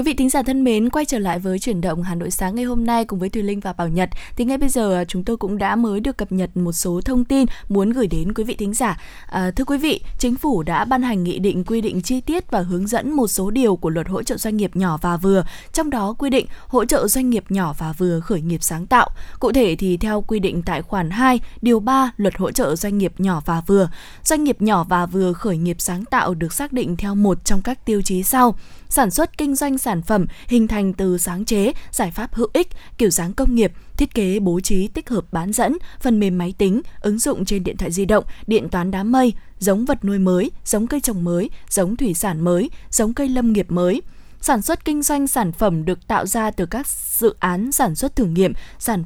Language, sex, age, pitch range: Vietnamese, female, 20-39, 185-245 Hz